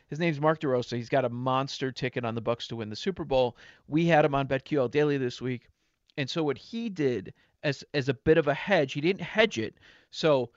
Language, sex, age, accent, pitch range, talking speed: English, male, 40-59, American, 125-165 Hz, 240 wpm